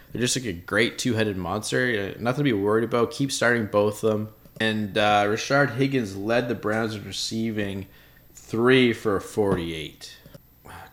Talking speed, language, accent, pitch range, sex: 160 wpm, English, American, 105-135 Hz, male